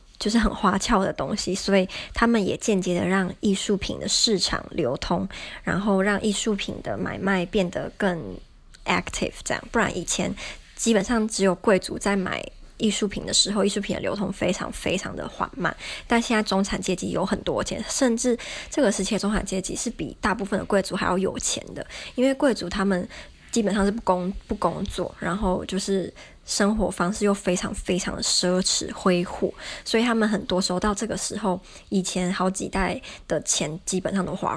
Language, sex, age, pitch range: Chinese, male, 20-39, 185-215 Hz